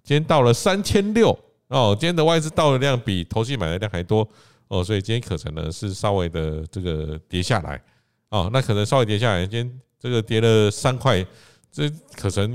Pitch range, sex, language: 95-130 Hz, male, Chinese